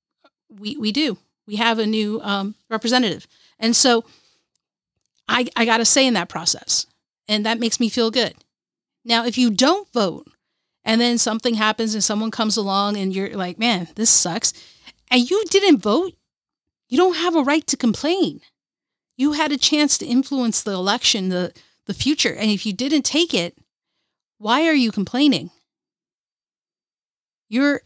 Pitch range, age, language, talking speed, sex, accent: 210-270 Hz, 40-59, English, 165 wpm, female, American